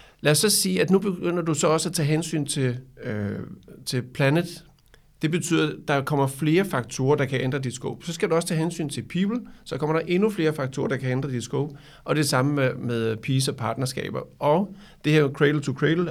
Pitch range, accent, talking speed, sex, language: 130-160 Hz, native, 235 wpm, male, Danish